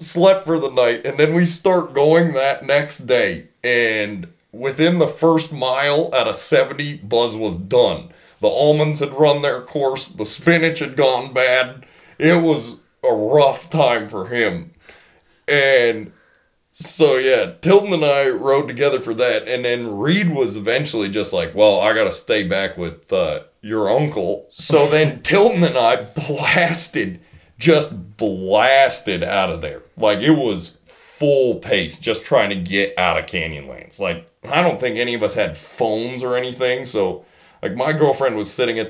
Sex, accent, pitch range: male, American, 125-170 Hz